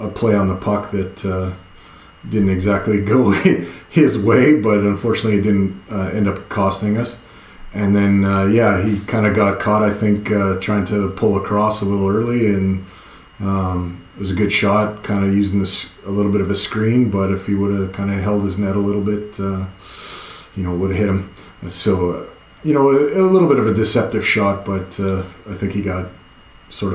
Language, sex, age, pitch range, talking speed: English, male, 30-49, 95-105 Hz, 215 wpm